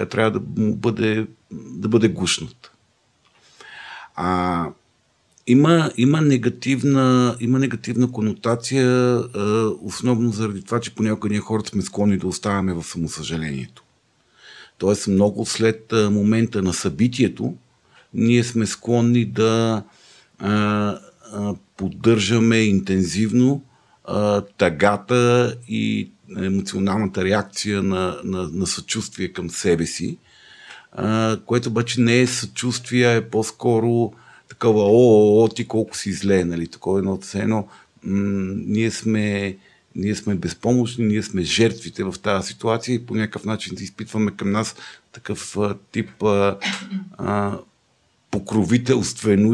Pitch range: 100-120 Hz